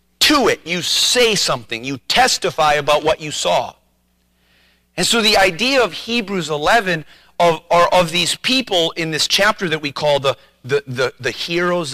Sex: male